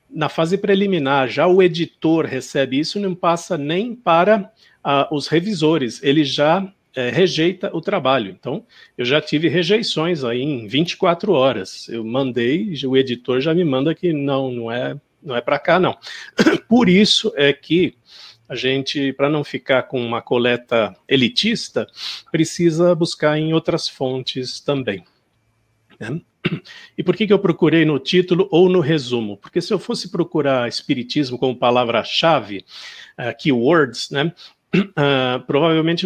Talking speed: 145 wpm